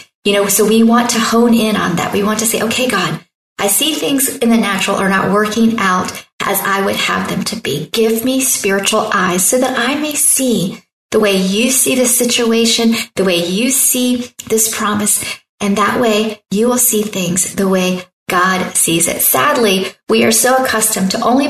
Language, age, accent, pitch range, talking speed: English, 40-59, American, 200-245 Hz, 205 wpm